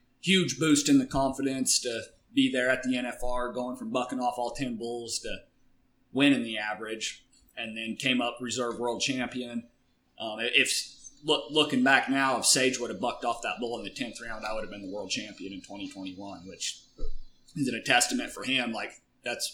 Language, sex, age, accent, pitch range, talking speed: English, male, 30-49, American, 110-130 Hz, 195 wpm